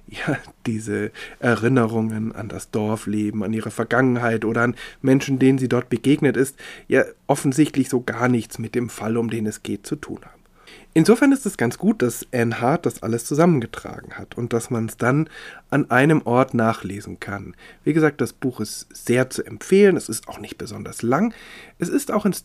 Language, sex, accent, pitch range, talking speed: German, male, German, 115-155 Hz, 195 wpm